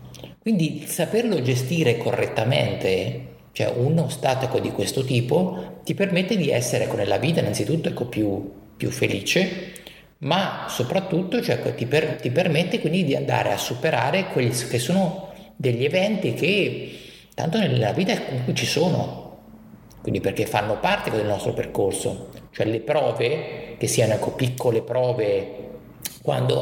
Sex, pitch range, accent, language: male, 115-165 Hz, native, Italian